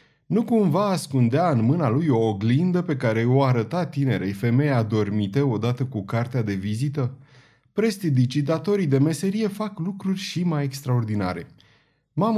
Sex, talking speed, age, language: male, 145 wpm, 30-49, Romanian